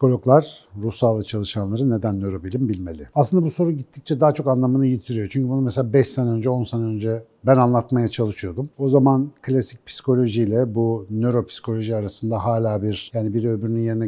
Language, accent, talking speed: Turkish, native, 170 wpm